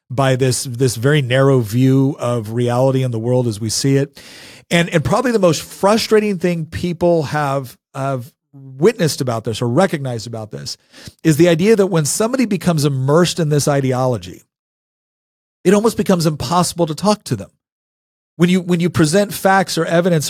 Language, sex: English, male